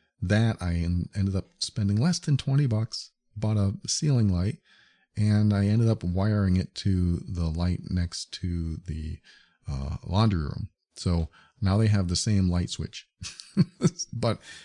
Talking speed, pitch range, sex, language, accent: 150 wpm, 90-120 Hz, male, English, American